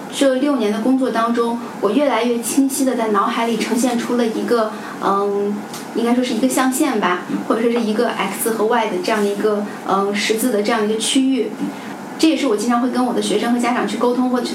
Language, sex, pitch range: Chinese, female, 225-290 Hz